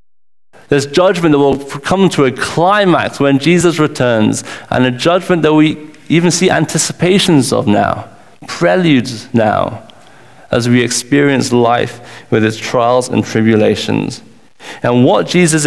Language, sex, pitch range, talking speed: English, male, 120-155 Hz, 135 wpm